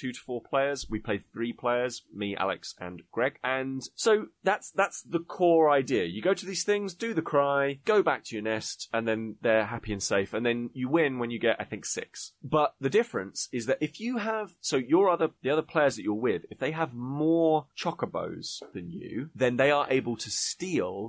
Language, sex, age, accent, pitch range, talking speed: English, male, 30-49, British, 105-135 Hz, 220 wpm